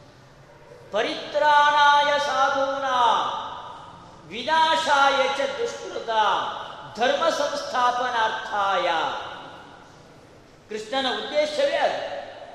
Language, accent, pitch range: Kannada, native, 275-330 Hz